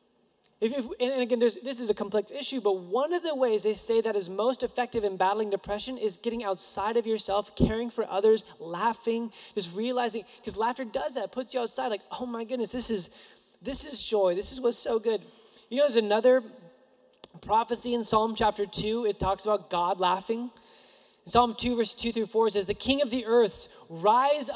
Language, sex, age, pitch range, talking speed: English, male, 20-39, 195-245 Hz, 205 wpm